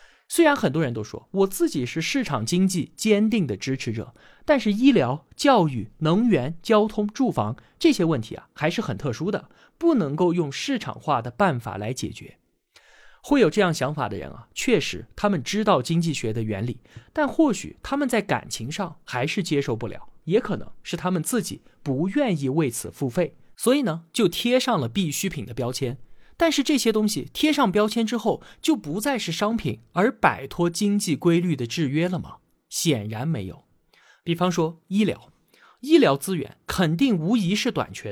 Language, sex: Chinese, male